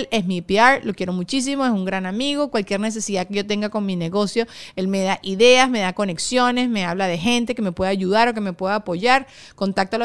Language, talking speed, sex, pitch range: Spanish, 235 wpm, female, 190-240 Hz